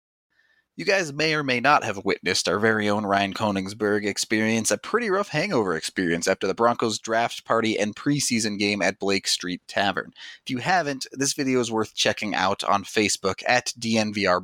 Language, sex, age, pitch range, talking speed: English, male, 30-49, 105-130 Hz, 185 wpm